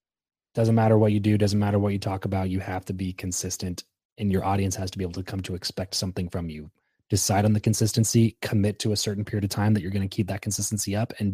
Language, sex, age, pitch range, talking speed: English, male, 20-39, 90-105 Hz, 265 wpm